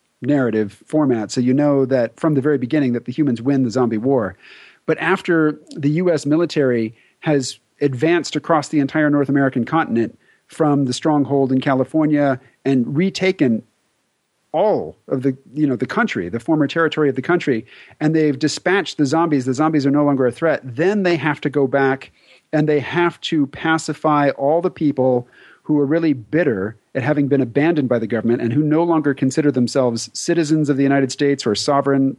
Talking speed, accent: 185 wpm, American